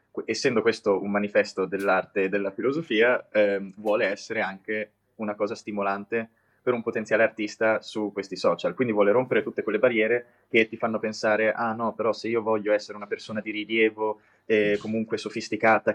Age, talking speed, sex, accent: 20-39, 175 wpm, male, native